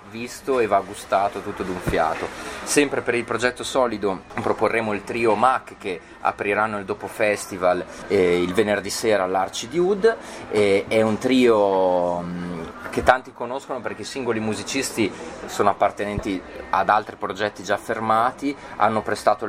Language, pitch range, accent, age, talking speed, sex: Italian, 95-115 Hz, native, 30-49, 140 wpm, male